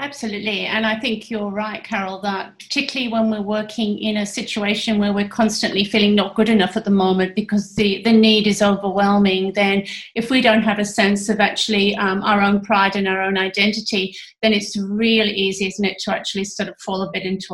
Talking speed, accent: 210 wpm, British